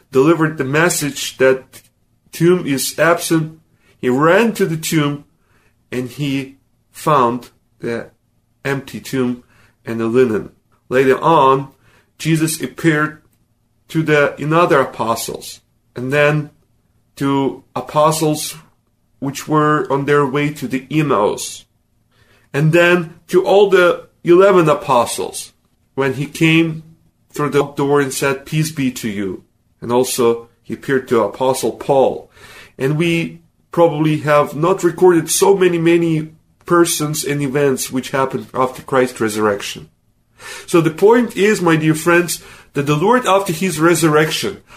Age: 40-59